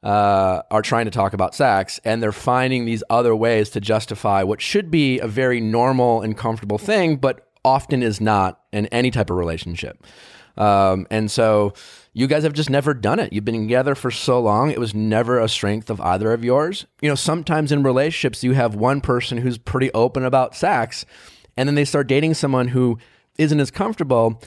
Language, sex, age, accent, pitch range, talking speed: English, male, 30-49, American, 105-140 Hz, 200 wpm